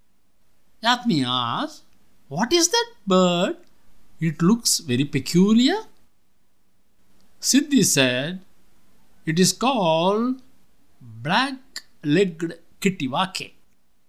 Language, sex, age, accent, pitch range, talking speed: English, male, 60-79, Indian, 140-215 Hz, 70 wpm